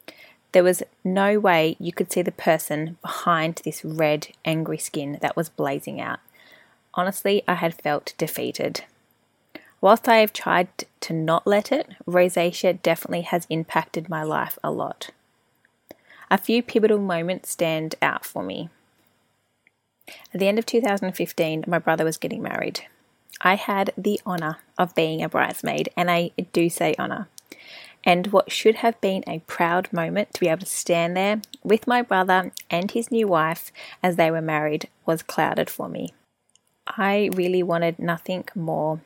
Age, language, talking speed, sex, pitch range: 20-39, English, 160 wpm, female, 165-195 Hz